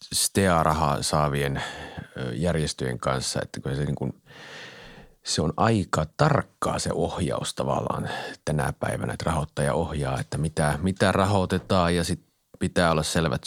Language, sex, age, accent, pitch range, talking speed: Finnish, male, 30-49, native, 80-110 Hz, 135 wpm